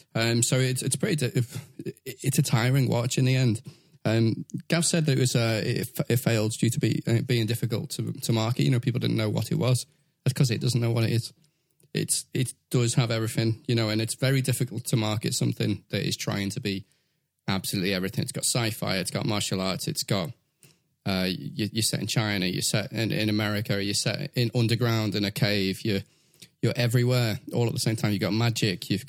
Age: 20-39